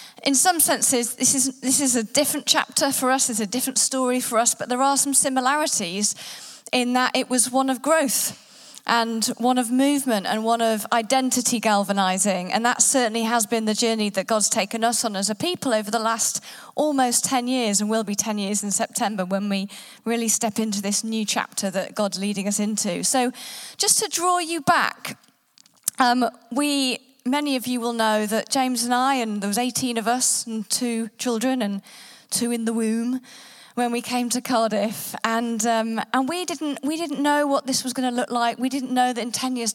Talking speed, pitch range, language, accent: 210 wpm, 220-260 Hz, English, British